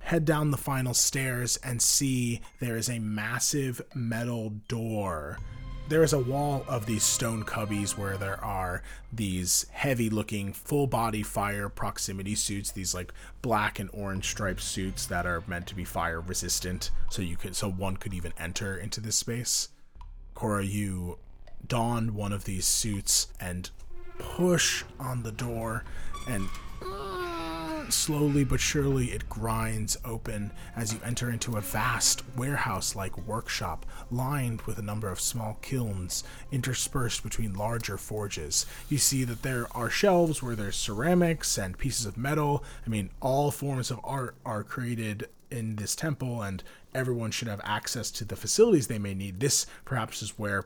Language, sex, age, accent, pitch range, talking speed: English, male, 30-49, American, 100-130 Hz, 155 wpm